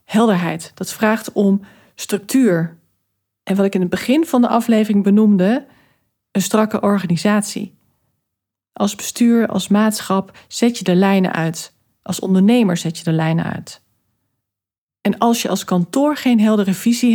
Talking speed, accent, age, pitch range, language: 145 wpm, Dutch, 40-59, 170-225 Hz, Dutch